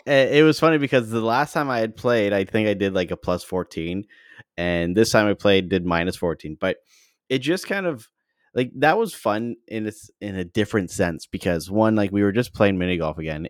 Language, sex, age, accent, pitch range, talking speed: English, male, 30-49, American, 85-110 Hz, 225 wpm